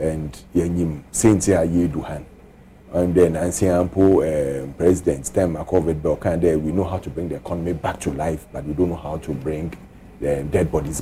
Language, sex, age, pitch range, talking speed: English, male, 40-59, 85-105 Hz, 165 wpm